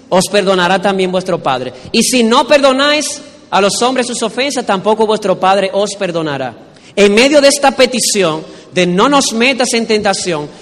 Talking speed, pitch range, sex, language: 170 wpm, 180-225 Hz, male, Spanish